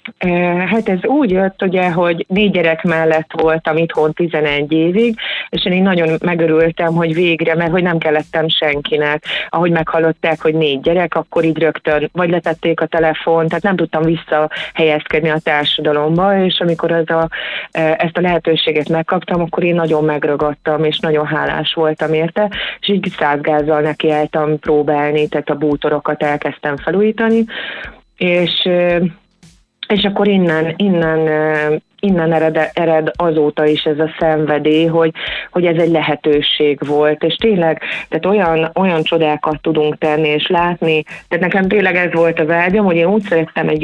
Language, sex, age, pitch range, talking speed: Hungarian, female, 30-49, 155-175 Hz, 155 wpm